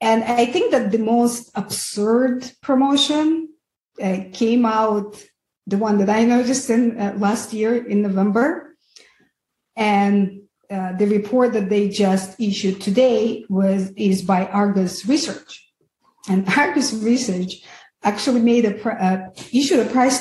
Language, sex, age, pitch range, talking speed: English, female, 50-69, 195-240 Hz, 135 wpm